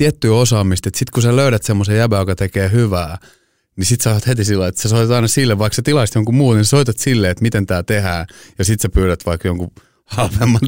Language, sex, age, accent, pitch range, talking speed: Finnish, male, 30-49, native, 90-110 Hz, 235 wpm